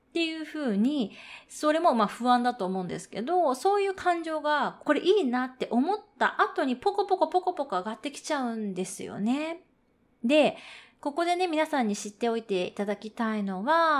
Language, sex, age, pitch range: Japanese, female, 20-39, 220-335 Hz